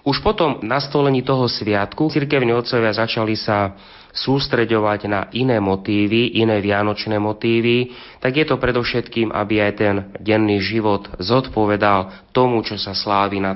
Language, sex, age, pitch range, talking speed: Slovak, male, 30-49, 100-120 Hz, 135 wpm